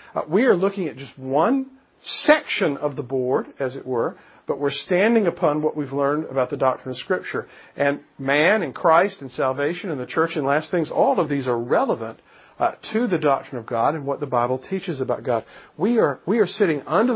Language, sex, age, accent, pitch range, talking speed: English, male, 50-69, American, 130-170 Hz, 215 wpm